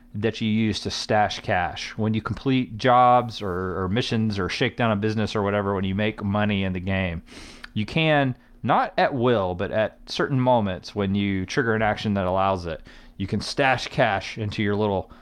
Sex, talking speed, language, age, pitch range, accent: male, 200 wpm, English, 30-49, 95-120 Hz, American